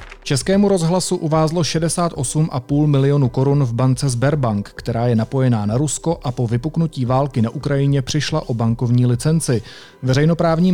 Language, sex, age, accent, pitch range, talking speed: Czech, male, 30-49, native, 125-150 Hz, 140 wpm